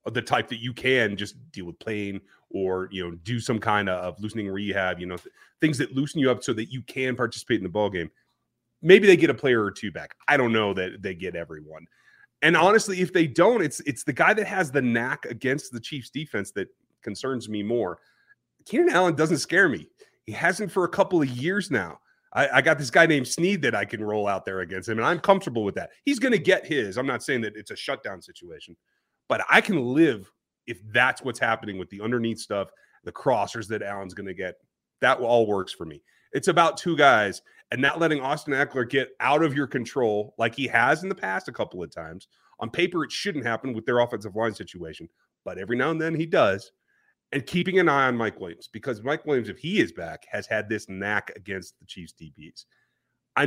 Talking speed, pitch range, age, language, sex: 230 wpm, 105-160 Hz, 30-49, English, male